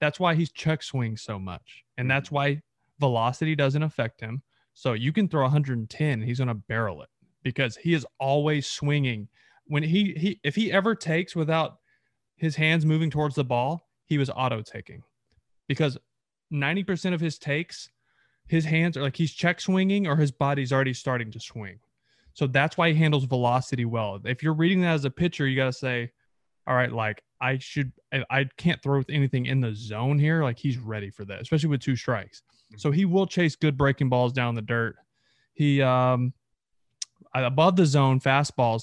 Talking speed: 190 wpm